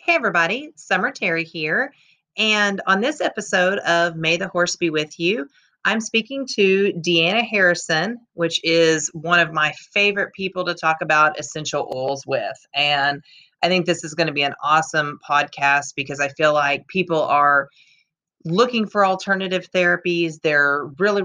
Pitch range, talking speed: 155-190 Hz, 160 wpm